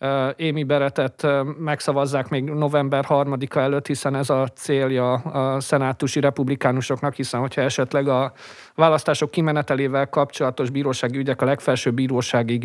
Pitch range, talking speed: 130-150 Hz, 125 wpm